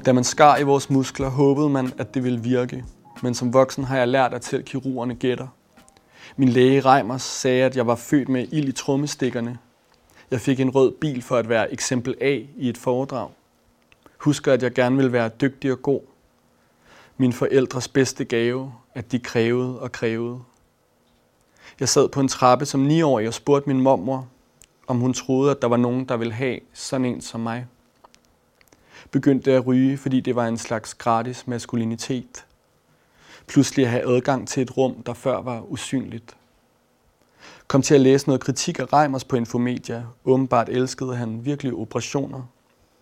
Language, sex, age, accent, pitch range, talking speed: Danish, male, 30-49, native, 120-135 Hz, 175 wpm